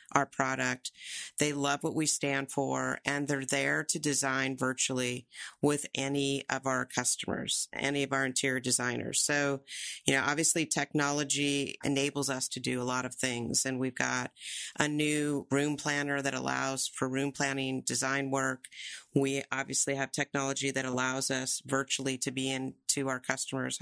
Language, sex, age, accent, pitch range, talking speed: English, female, 40-59, American, 130-145 Hz, 160 wpm